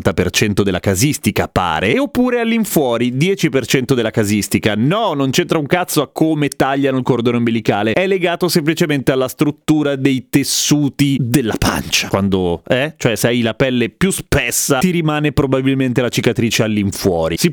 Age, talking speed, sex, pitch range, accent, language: 30-49, 170 wpm, male, 120-165 Hz, native, Italian